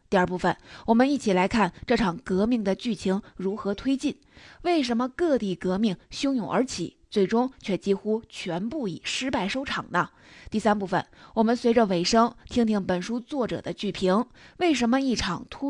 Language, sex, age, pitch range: Chinese, female, 20-39, 195-255 Hz